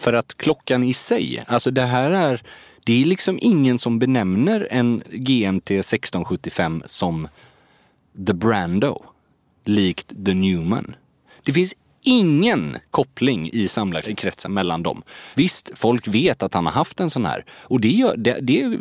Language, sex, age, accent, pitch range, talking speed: English, male, 30-49, Swedish, 95-150 Hz, 150 wpm